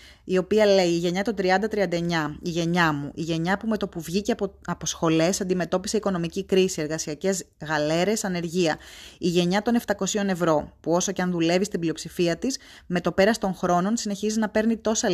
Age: 20-39